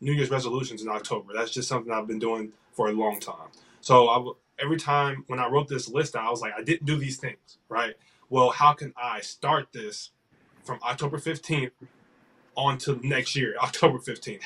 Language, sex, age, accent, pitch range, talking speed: English, male, 20-39, American, 125-145 Hz, 195 wpm